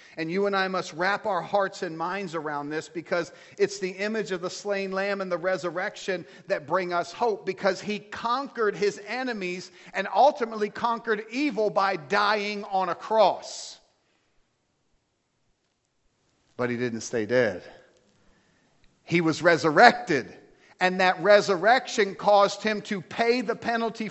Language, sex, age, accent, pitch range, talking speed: English, male, 50-69, American, 190-225 Hz, 145 wpm